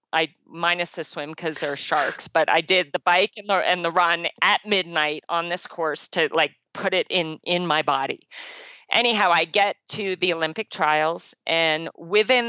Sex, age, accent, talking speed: female, 40-59, American, 185 wpm